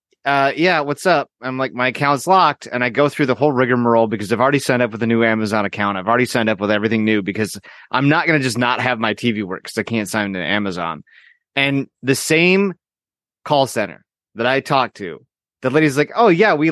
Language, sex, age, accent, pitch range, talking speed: English, male, 30-49, American, 125-165 Hz, 235 wpm